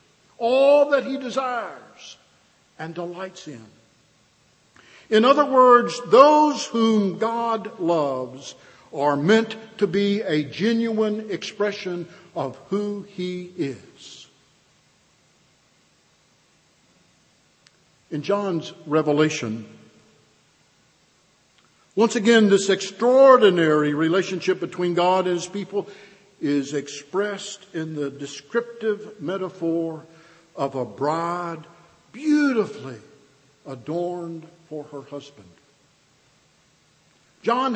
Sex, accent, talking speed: male, American, 85 wpm